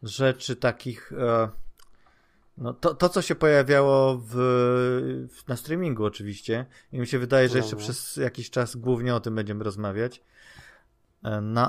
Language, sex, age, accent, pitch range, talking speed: Polish, male, 30-49, native, 110-140 Hz, 135 wpm